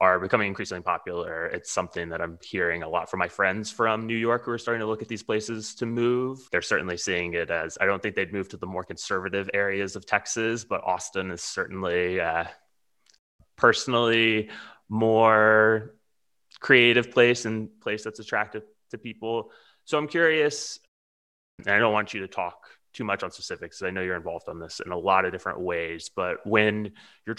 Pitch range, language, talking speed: 85-110 Hz, English, 195 wpm